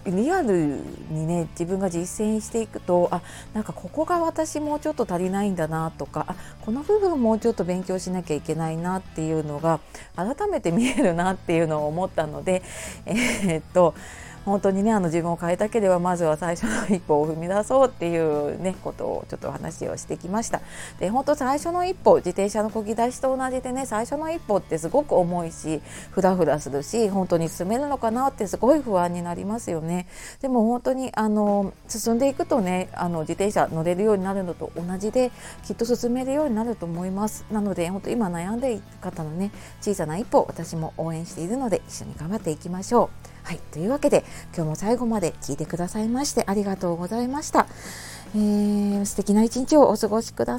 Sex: female